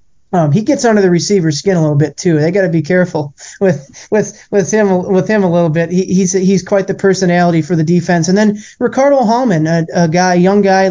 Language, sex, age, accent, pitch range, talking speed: English, male, 20-39, American, 160-195 Hz, 240 wpm